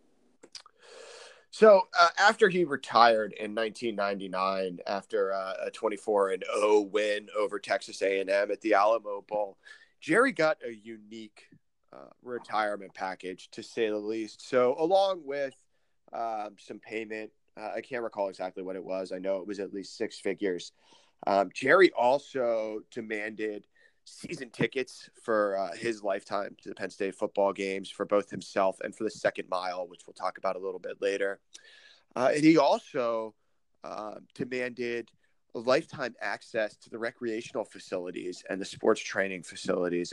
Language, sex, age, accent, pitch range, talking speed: English, male, 20-39, American, 95-125 Hz, 155 wpm